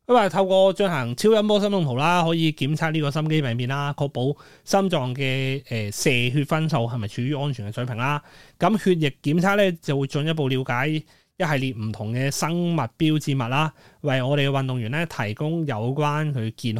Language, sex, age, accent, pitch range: Chinese, male, 30-49, native, 115-160 Hz